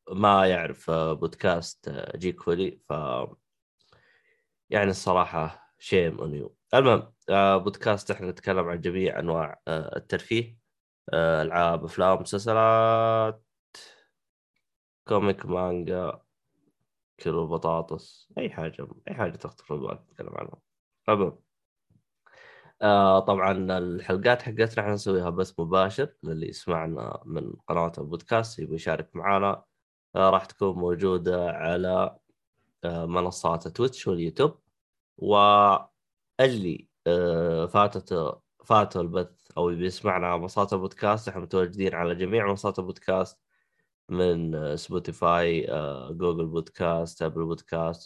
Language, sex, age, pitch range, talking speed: Arabic, male, 20-39, 85-100 Hz, 95 wpm